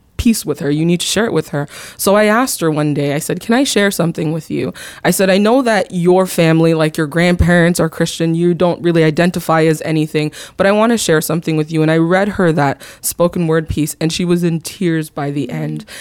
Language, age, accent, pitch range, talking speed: English, 20-39, American, 160-205 Hz, 245 wpm